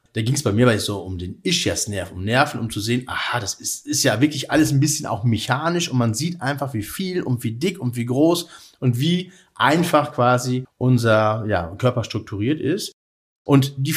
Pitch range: 105-150 Hz